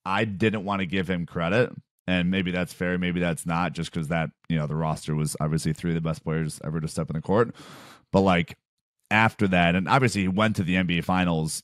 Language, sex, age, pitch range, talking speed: English, male, 30-49, 85-100 Hz, 235 wpm